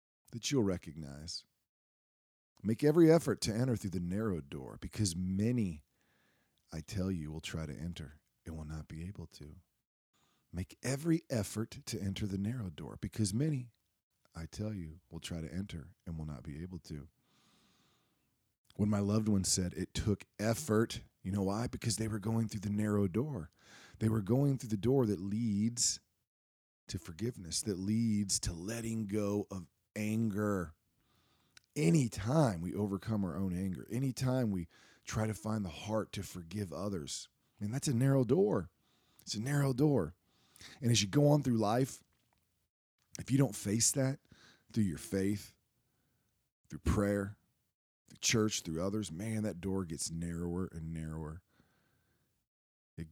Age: 40-59